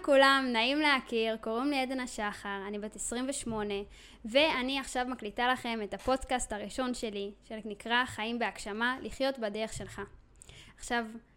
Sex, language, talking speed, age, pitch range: female, Hebrew, 130 wpm, 20-39, 220-265 Hz